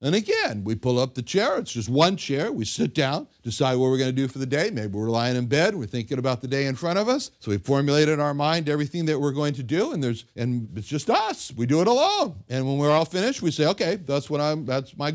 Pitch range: 120-170 Hz